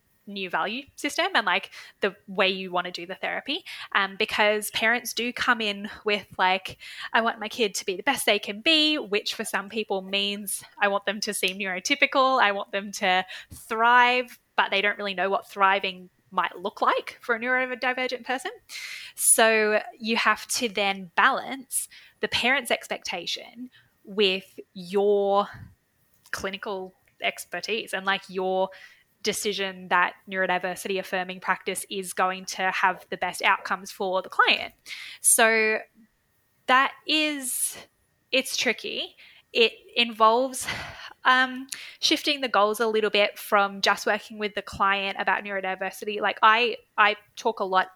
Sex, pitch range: female, 195-240 Hz